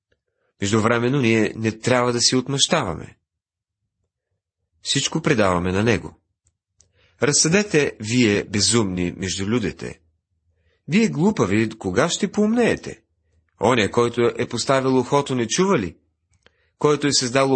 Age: 40-59